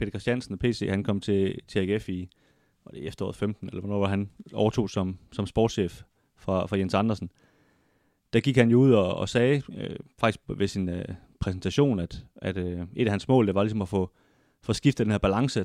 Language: Danish